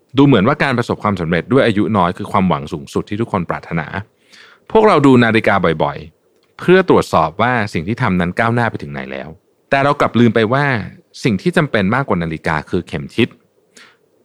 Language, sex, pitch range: Thai, male, 90-125 Hz